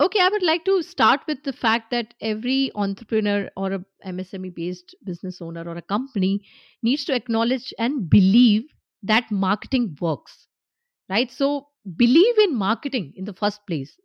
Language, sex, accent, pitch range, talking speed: English, female, Indian, 210-270 Hz, 160 wpm